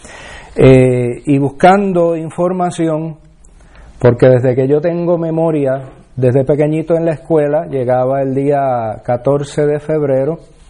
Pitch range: 130-160 Hz